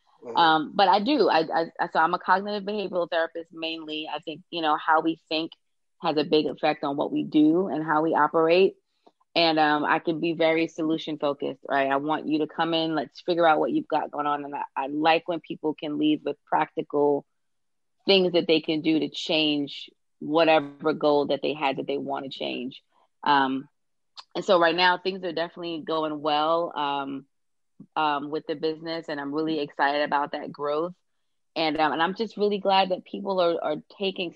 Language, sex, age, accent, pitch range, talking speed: English, female, 20-39, American, 150-170 Hz, 205 wpm